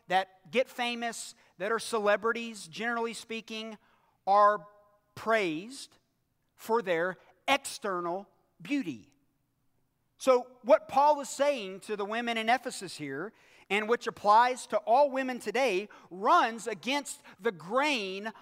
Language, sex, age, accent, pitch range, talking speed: English, male, 40-59, American, 150-225 Hz, 115 wpm